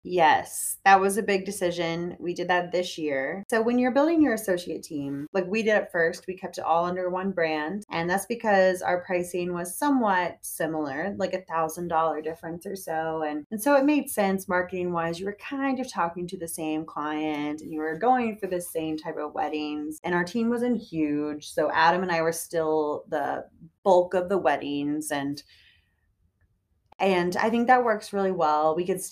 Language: English